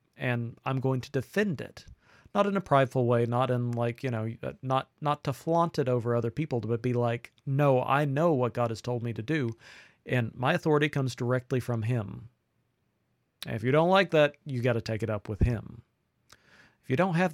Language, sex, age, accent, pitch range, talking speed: English, male, 40-59, American, 120-145 Hz, 215 wpm